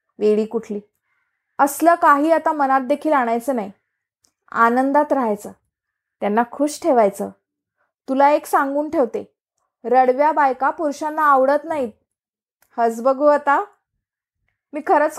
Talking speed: 110 wpm